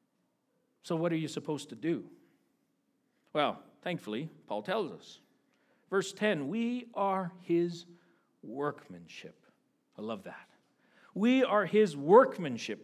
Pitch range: 185-250 Hz